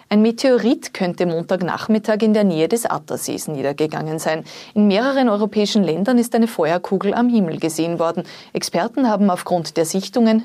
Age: 30-49